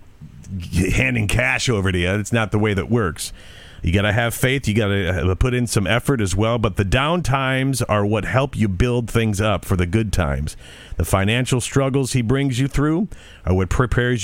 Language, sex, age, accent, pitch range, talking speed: English, male, 40-59, American, 95-120 Hz, 205 wpm